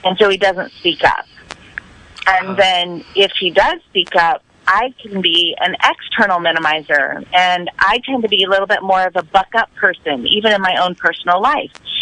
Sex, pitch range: female, 165-210 Hz